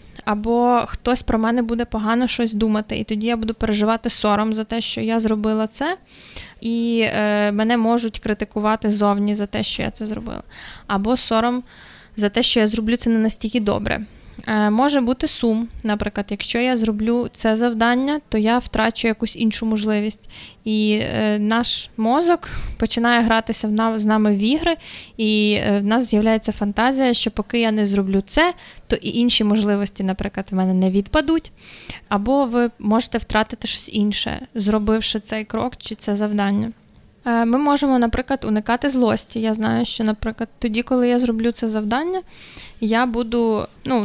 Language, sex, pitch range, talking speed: Ukrainian, female, 215-240 Hz, 155 wpm